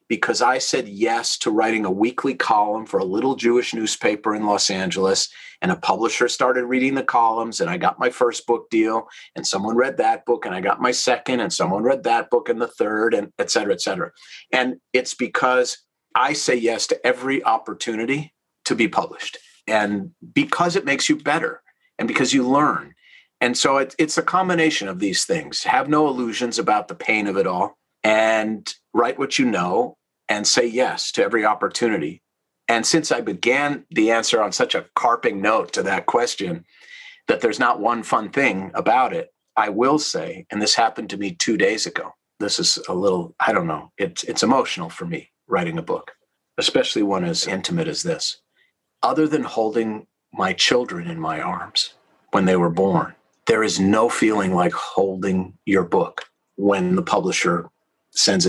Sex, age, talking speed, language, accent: male, 40-59, 185 wpm, English, American